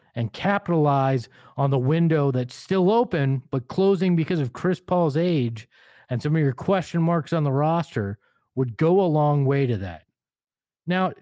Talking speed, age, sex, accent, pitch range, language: 170 wpm, 40-59, male, American, 125-170 Hz, English